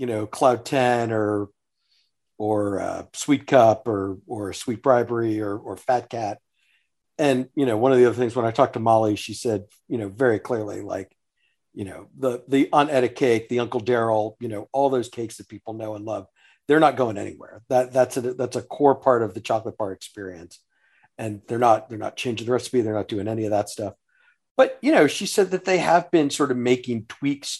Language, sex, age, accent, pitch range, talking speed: English, male, 50-69, American, 110-140 Hz, 220 wpm